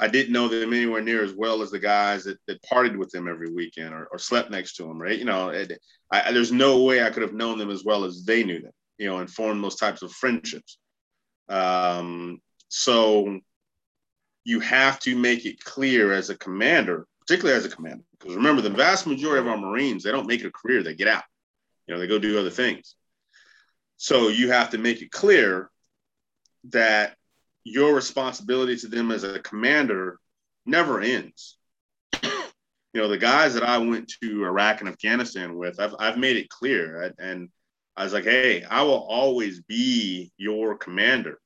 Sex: male